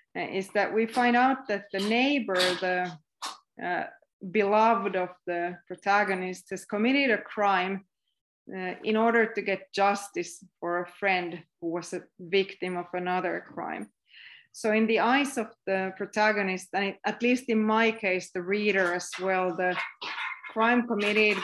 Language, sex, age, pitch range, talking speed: English, female, 30-49, 185-220 Hz, 150 wpm